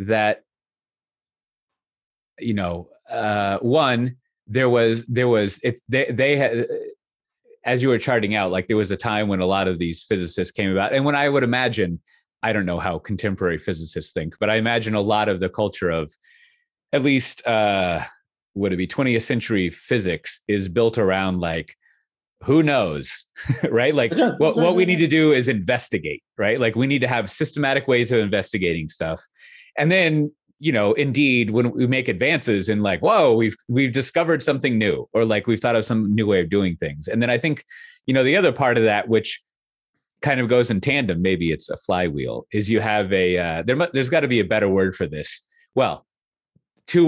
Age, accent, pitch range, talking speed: 30-49, American, 100-130 Hz, 195 wpm